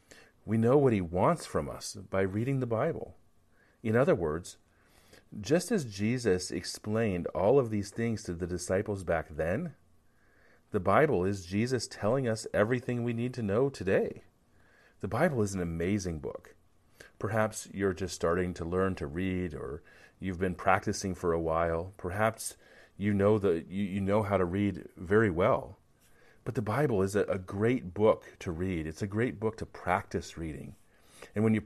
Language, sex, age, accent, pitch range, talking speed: English, male, 40-59, American, 90-110 Hz, 170 wpm